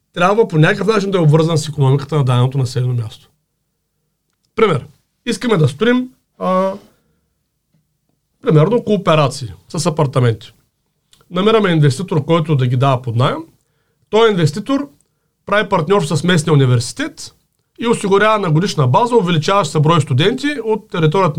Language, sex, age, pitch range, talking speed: Bulgarian, male, 40-59, 135-185 Hz, 130 wpm